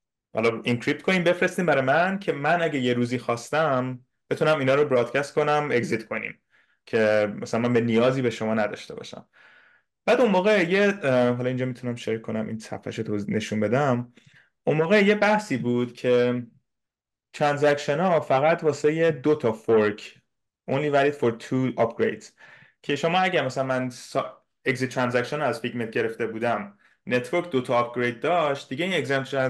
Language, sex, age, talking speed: Persian, male, 20-39, 165 wpm